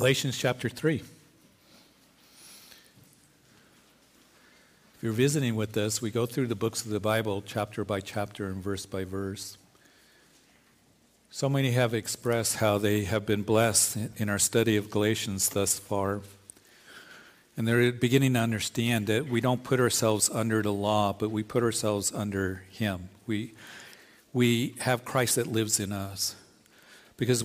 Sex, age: male, 50-69